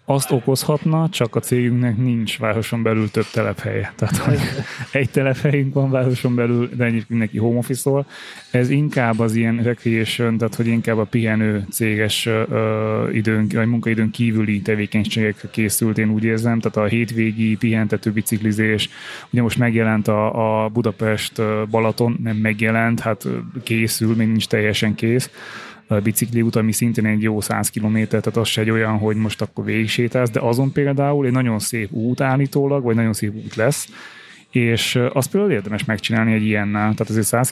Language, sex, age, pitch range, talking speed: Hungarian, male, 20-39, 110-120 Hz, 165 wpm